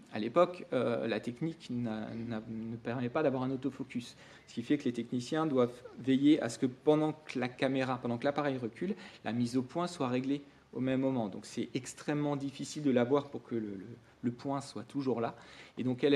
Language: French